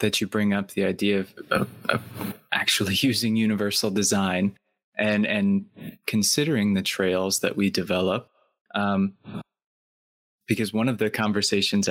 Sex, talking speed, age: male, 130 wpm, 20-39